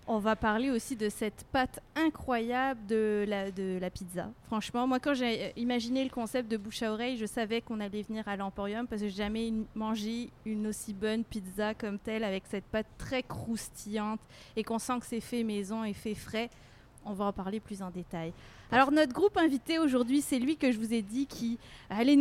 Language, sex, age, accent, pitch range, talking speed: French, female, 30-49, French, 215-275 Hz, 215 wpm